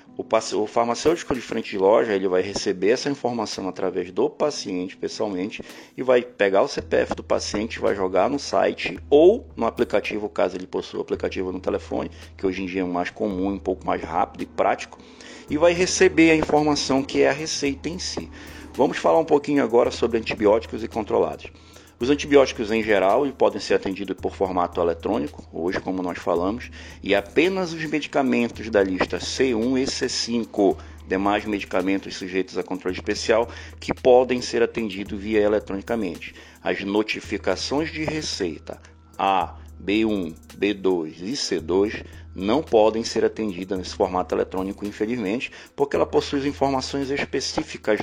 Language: Portuguese